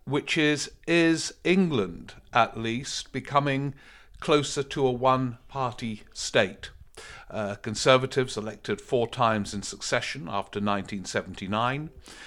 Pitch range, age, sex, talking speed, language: 105-130 Hz, 50-69, male, 105 wpm, English